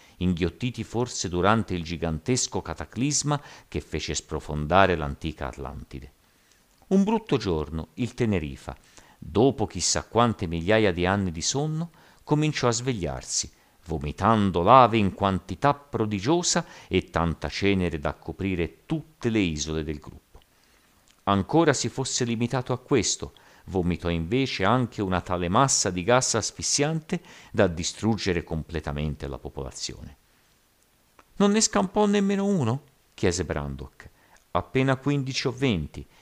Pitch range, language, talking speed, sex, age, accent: 80-125 Hz, Italian, 120 wpm, male, 50-69, native